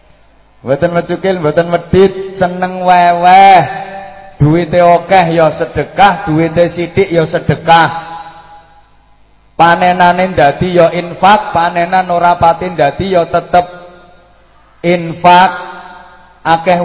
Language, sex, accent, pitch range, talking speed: English, male, Indonesian, 165-195 Hz, 95 wpm